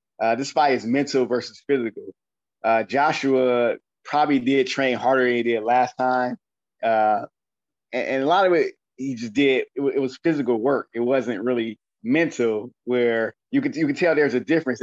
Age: 20-39